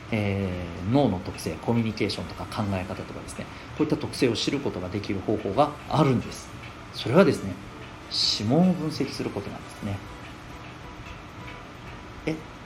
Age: 40-59